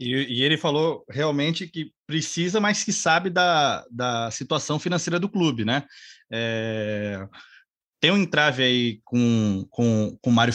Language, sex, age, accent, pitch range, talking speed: Portuguese, male, 20-39, Brazilian, 130-180 Hz, 155 wpm